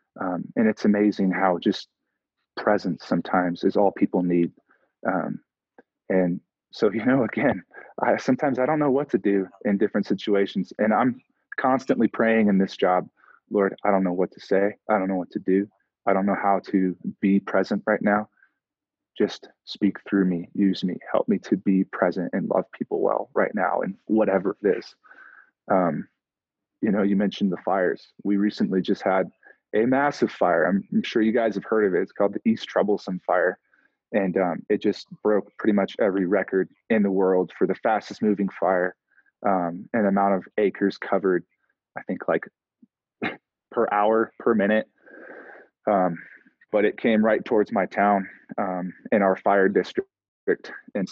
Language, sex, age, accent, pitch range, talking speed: English, male, 20-39, American, 95-105 Hz, 180 wpm